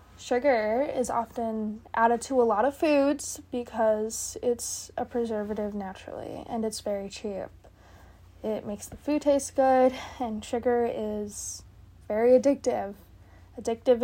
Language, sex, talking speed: English, female, 130 wpm